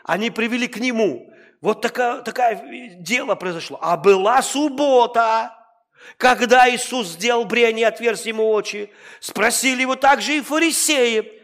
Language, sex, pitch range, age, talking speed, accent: Russian, male, 205-275 Hz, 40-59, 125 wpm, native